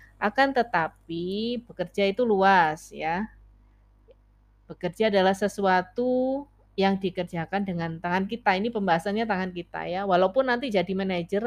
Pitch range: 170-215 Hz